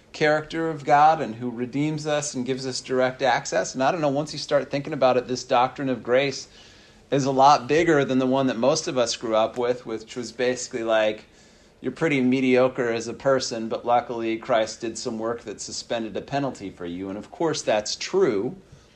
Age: 40-59